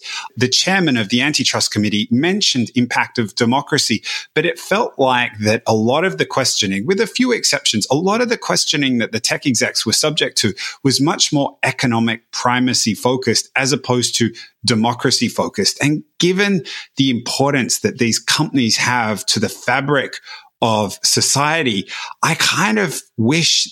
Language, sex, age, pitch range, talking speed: English, male, 30-49, 115-145 Hz, 160 wpm